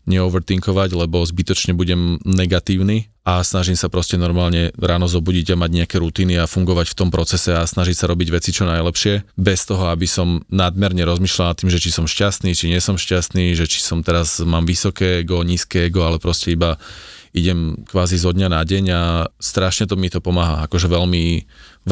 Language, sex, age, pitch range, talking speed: Slovak, male, 30-49, 90-95 Hz, 195 wpm